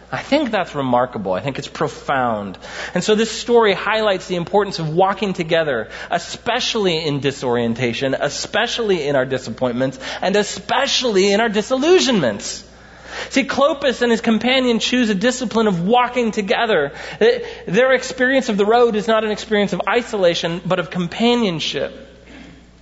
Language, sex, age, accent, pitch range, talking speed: English, male, 30-49, American, 150-215 Hz, 145 wpm